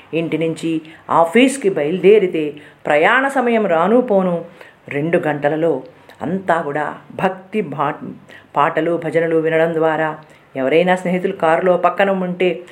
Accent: native